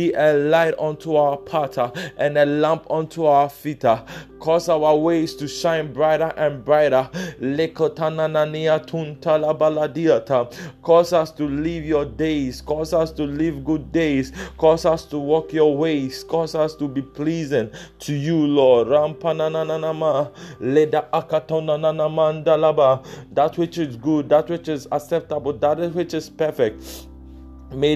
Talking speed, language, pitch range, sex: 125 wpm, English, 150-165 Hz, male